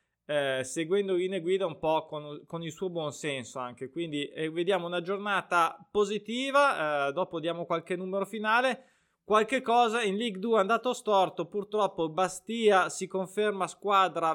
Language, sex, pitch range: Italian, male, 150-190 Hz